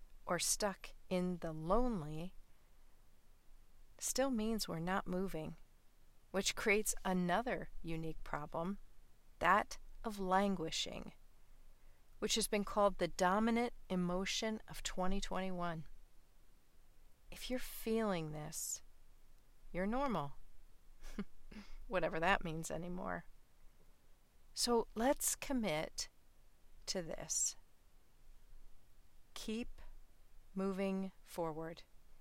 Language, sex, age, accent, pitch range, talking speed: English, female, 40-59, American, 165-220 Hz, 85 wpm